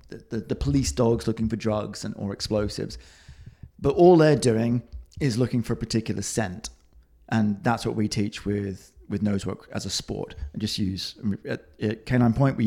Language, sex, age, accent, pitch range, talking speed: English, male, 30-49, British, 105-135 Hz, 185 wpm